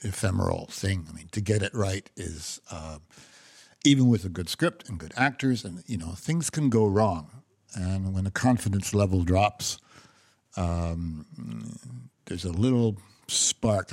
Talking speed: 155 wpm